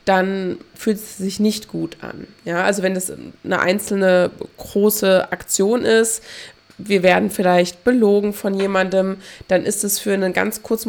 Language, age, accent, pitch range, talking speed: German, 20-39, German, 185-210 Hz, 160 wpm